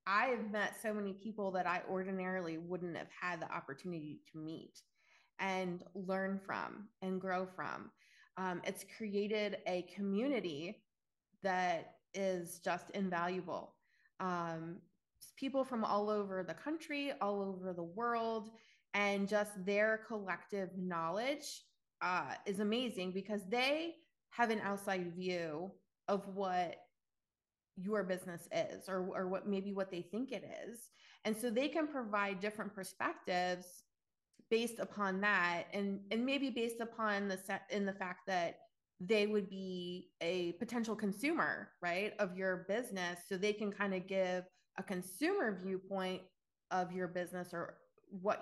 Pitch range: 185-215 Hz